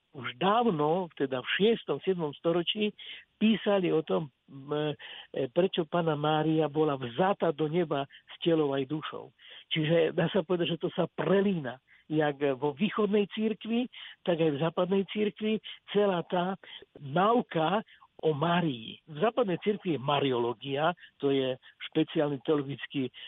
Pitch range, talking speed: 150-190 Hz, 135 wpm